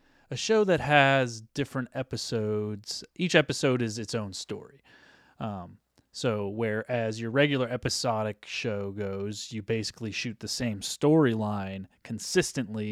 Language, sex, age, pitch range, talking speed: English, male, 30-49, 105-125 Hz, 125 wpm